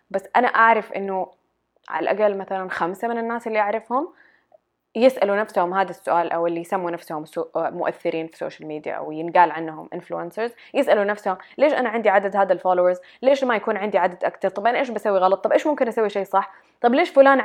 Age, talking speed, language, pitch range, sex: 20-39, 195 wpm, English, 170-215 Hz, female